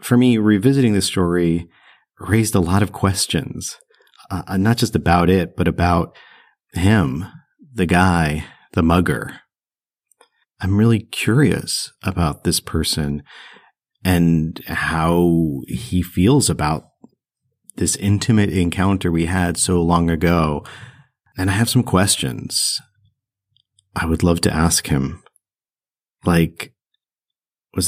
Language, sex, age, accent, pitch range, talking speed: English, male, 40-59, American, 85-110 Hz, 115 wpm